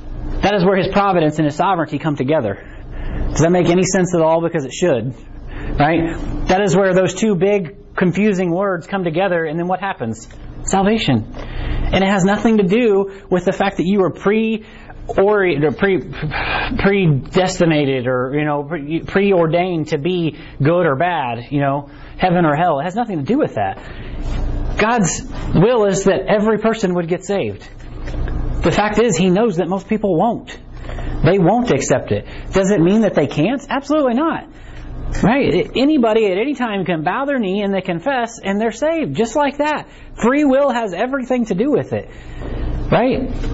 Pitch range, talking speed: 160-210 Hz, 175 wpm